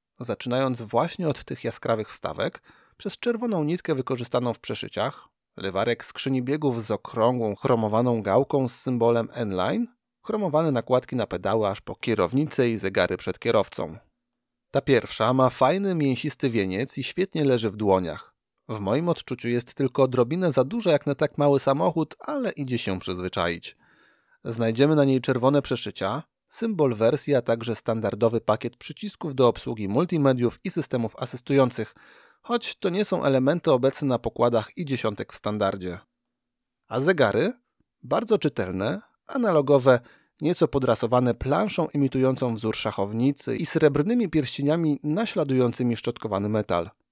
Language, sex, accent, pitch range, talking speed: Polish, male, native, 115-155 Hz, 135 wpm